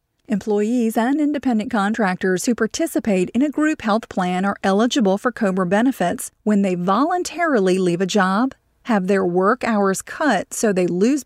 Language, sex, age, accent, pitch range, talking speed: English, female, 40-59, American, 190-245 Hz, 160 wpm